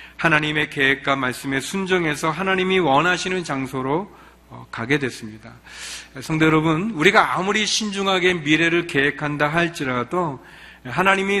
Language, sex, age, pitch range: Korean, male, 40-59, 135-185 Hz